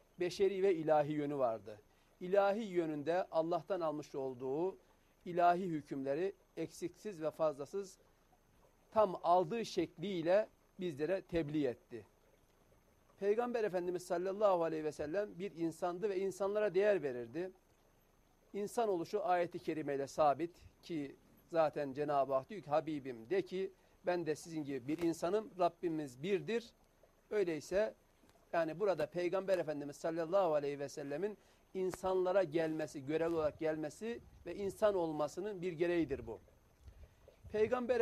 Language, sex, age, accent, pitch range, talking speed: Turkish, male, 50-69, native, 150-190 Hz, 120 wpm